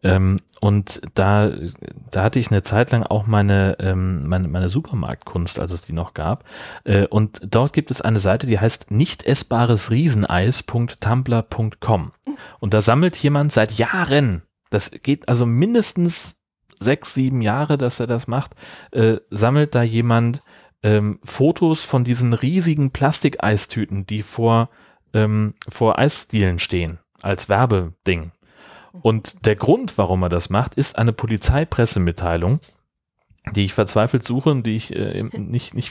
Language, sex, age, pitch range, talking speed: German, male, 30-49, 100-125 Hz, 145 wpm